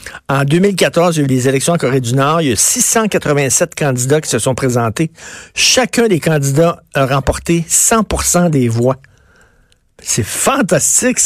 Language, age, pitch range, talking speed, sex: French, 50-69, 140-190 Hz, 165 wpm, male